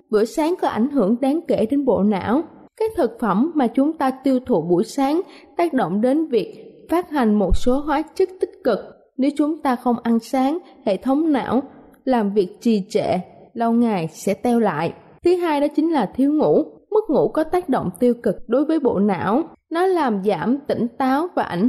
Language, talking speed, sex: Vietnamese, 210 wpm, female